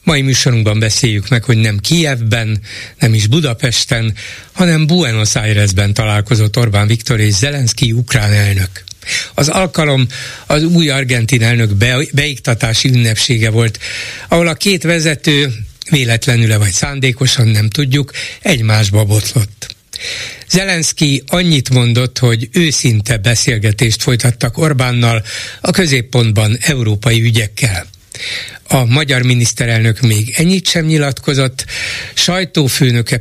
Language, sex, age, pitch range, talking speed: Hungarian, male, 60-79, 115-145 Hz, 110 wpm